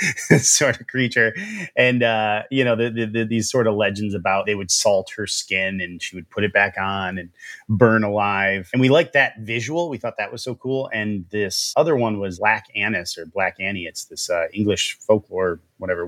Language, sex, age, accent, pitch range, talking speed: English, male, 30-49, American, 100-120 Hz, 200 wpm